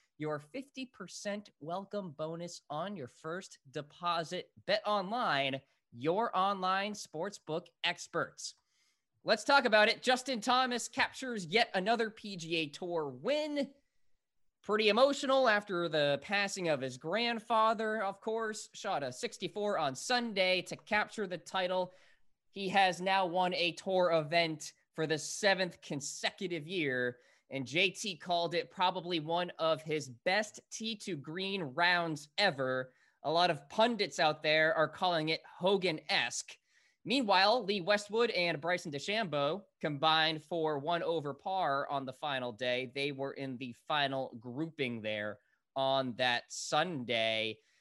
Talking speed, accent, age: 135 wpm, American, 20-39